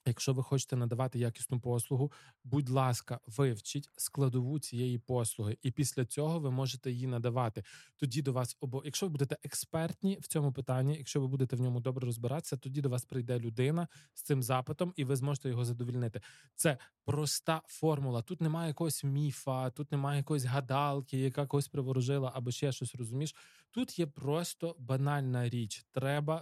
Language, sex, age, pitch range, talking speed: Ukrainian, male, 20-39, 125-150 Hz, 170 wpm